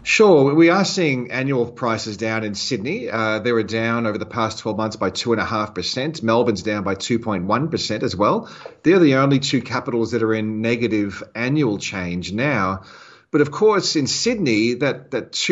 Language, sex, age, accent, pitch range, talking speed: English, male, 40-59, Australian, 105-130 Hz, 190 wpm